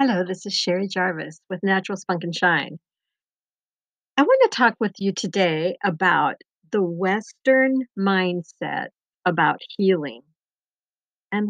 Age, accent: 50-69, American